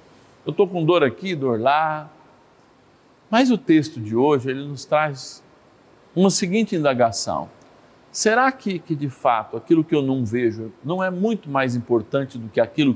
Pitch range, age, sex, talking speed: 120-180 Hz, 50-69, male, 160 wpm